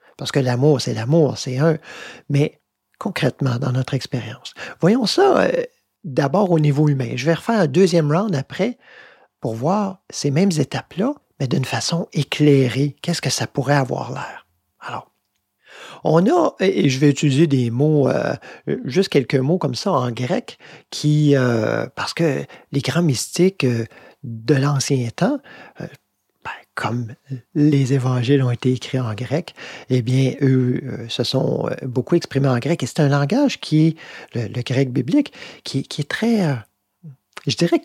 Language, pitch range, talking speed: French, 130-170 Hz, 170 wpm